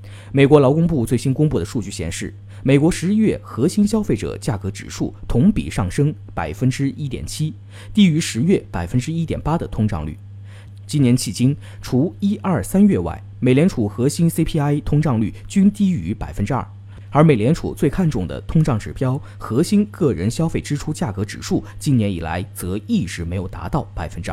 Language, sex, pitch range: Chinese, male, 100-150 Hz